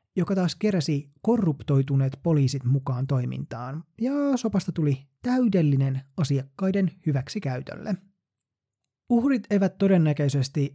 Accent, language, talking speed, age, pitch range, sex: native, Finnish, 95 wpm, 20-39, 135-180 Hz, male